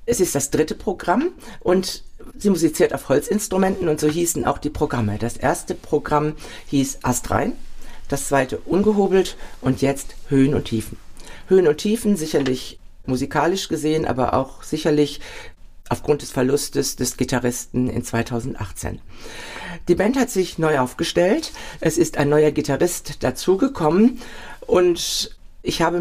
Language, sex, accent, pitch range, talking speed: German, female, German, 130-175 Hz, 140 wpm